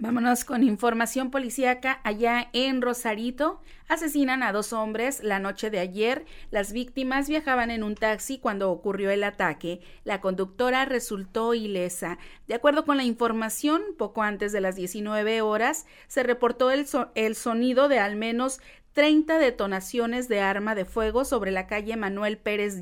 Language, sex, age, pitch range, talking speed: Spanish, female, 40-59, 215-265 Hz, 160 wpm